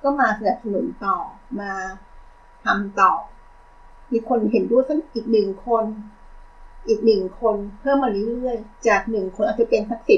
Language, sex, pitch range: Thai, female, 210-260 Hz